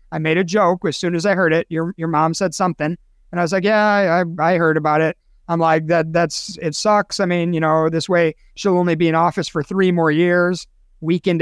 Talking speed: 245 wpm